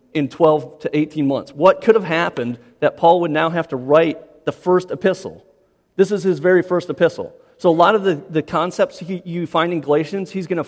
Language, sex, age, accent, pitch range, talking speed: English, male, 40-59, American, 140-180 Hz, 225 wpm